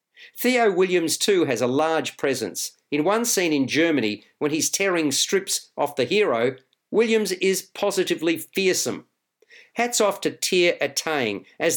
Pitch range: 145-195 Hz